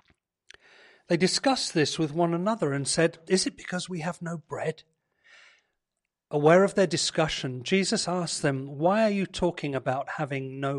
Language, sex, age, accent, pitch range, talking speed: English, male, 40-59, British, 155-220 Hz, 160 wpm